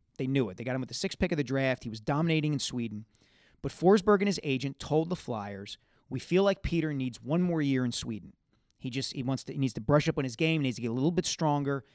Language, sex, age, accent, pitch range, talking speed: English, male, 40-59, American, 125-165 Hz, 280 wpm